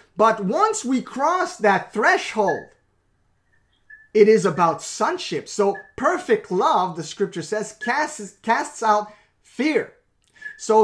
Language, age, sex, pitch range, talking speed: English, 30-49, male, 180-230 Hz, 115 wpm